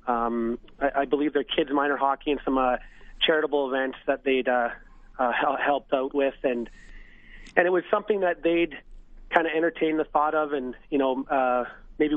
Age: 30-49